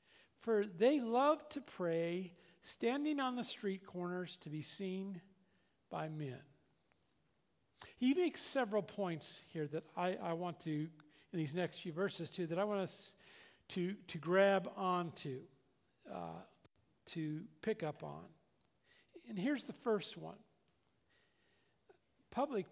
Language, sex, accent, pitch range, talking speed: English, male, American, 165-225 Hz, 130 wpm